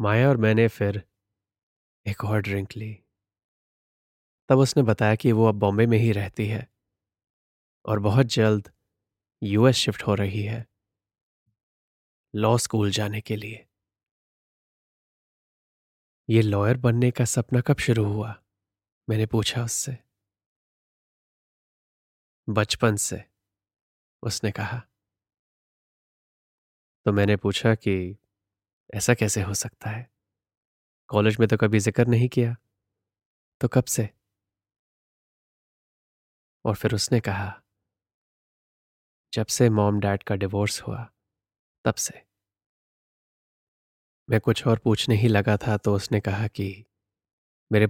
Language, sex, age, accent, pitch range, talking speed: Hindi, male, 20-39, native, 100-115 Hz, 115 wpm